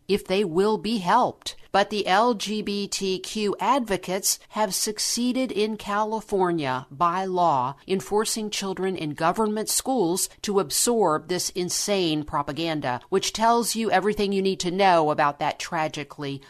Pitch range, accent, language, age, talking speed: 165-210 Hz, American, English, 50-69, 135 wpm